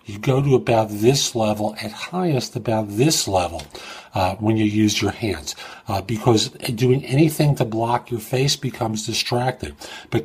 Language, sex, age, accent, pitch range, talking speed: English, male, 50-69, American, 100-135 Hz, 165 wpm